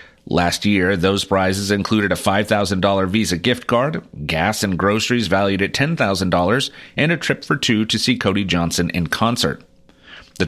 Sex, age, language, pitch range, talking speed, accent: male, 30-49, English, 90-110 Hz, 160 wpm, American